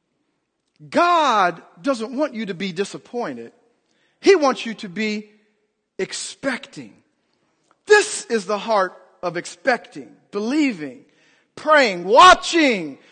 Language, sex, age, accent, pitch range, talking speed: English, male, 50-69, American, 225-310 Hz, 100 wpm